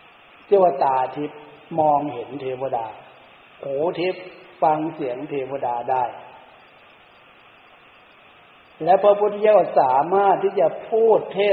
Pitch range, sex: 150-200 Hz, male